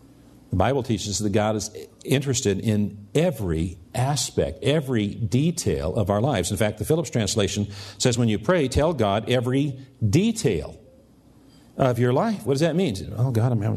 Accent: American